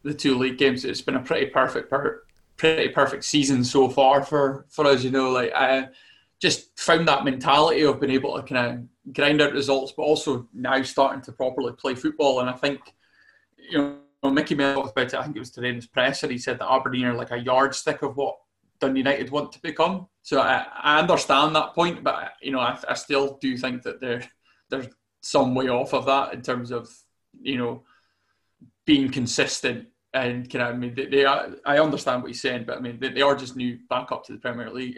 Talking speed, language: 225 wpm, English